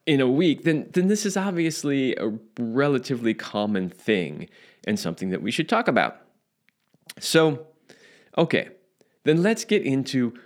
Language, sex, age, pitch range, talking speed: English, male, 20-39, 110-185 Hz, 145 wpm